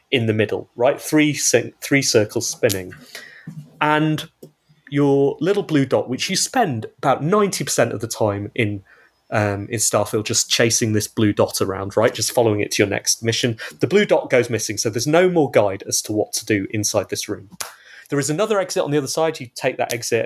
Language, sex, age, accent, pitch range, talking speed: English, male, 30-49, British, 115-165 Hz, 205 wpm